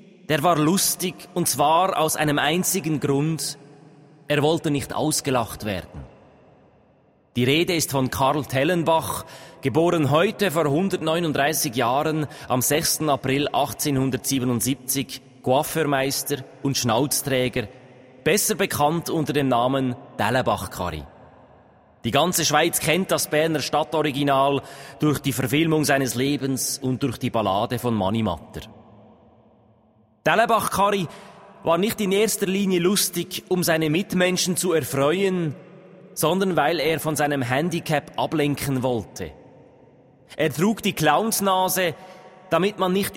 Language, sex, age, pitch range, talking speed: German, male, 30-49, 135-175 Hz, 115 wpm